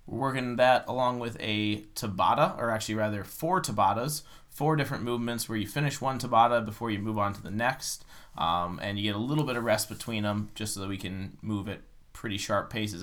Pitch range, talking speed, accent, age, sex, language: 105-140 Hz, 220 wpm, American, 20-39, male, English